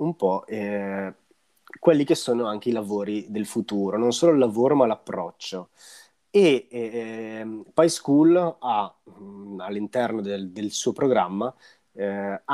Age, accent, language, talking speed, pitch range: 30-49, native, Italian, 135 wpm, 105-155 Hz